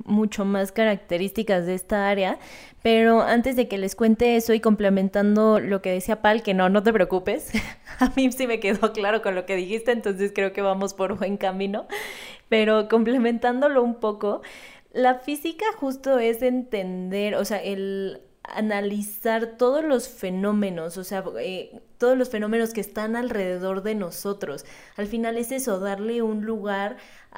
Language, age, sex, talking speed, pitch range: Spanish, 20-39, female, 165 wpm, 190-220 Hz